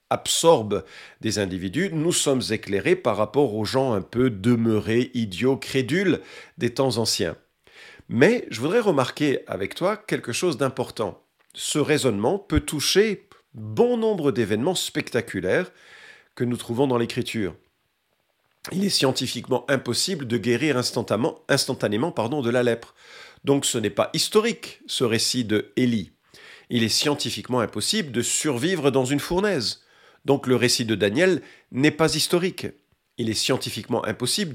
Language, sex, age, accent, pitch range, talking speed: French, male, 50-69, French, 110-145 Hz, 140 wpm